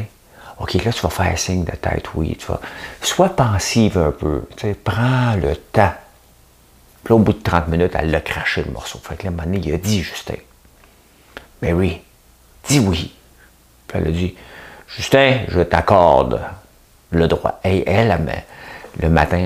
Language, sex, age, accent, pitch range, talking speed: French, male, 50-69, French, 80-110 Hz, 180 wpm